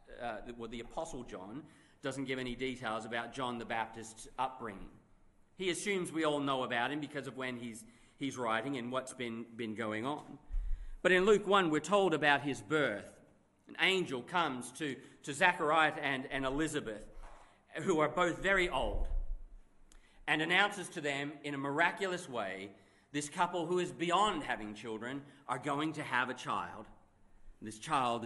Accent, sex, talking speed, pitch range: Australian, male, 170 wpm, 115-150 Hz